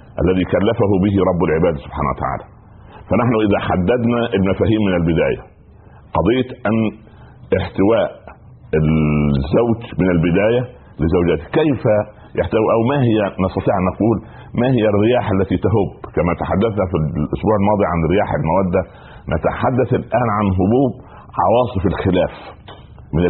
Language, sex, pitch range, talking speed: Arabic, male, 90-120 Hz, 120 wpm